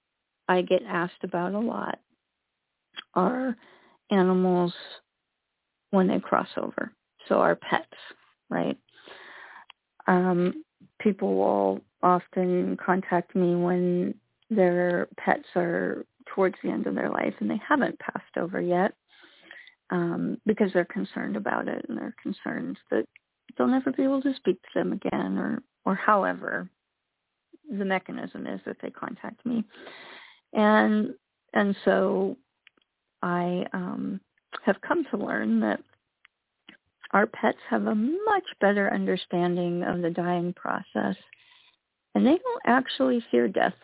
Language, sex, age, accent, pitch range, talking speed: English, female, 40-59, American, 180-230 Hz, 130 wpm